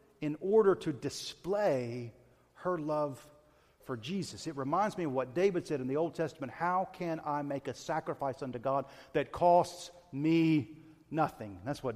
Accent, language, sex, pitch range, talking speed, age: American, English, male, 110-160 Hz, 165 wpm, 40-59